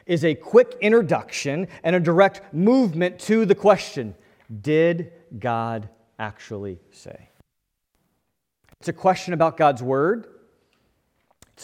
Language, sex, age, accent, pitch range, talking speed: English, male, 40-59, American, 140-230 Hz, 115 wpm